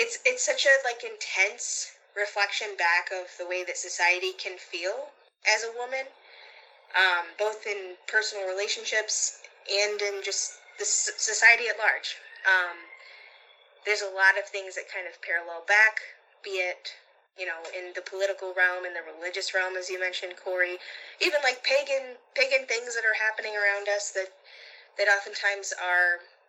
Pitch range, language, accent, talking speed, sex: 180-245 Hz, English, American, 160 wpm, female